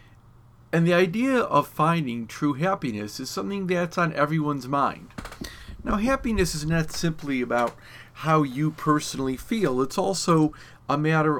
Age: 50-69